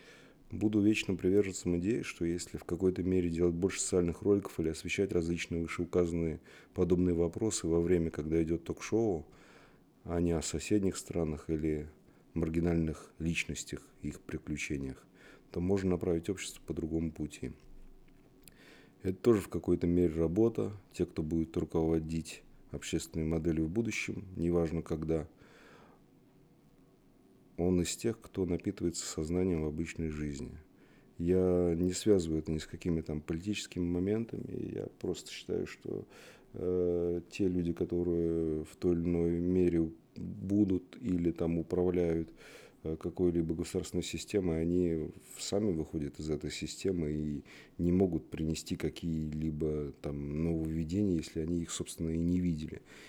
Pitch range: 80-90 Hz